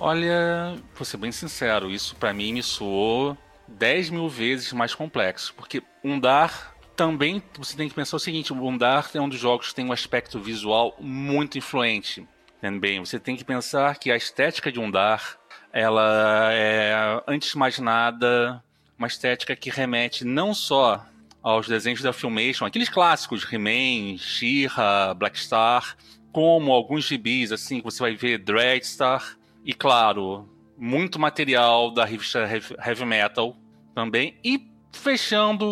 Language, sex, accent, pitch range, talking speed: Portuguese, male, Brazilian, 115-145 Hz, 145 wpm